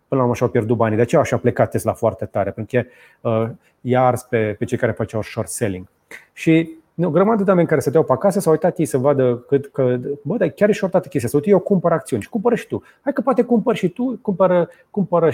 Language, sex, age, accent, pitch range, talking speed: Romanian, male, 30-49, native, 120-160 Hz, 260 wpm